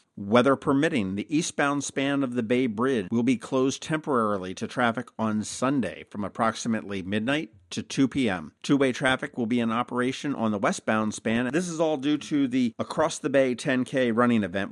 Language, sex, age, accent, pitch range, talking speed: English, male, 50-69, American, 110-135 Hz, 185 wpm